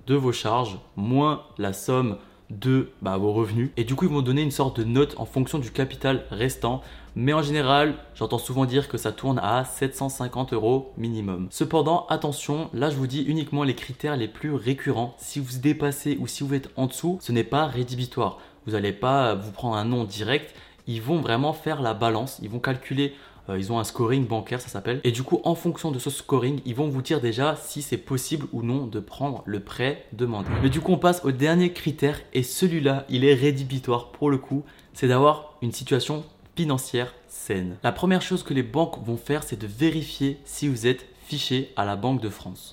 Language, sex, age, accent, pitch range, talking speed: French, male, 20-39, French, 115-145 Hz, 215 wpm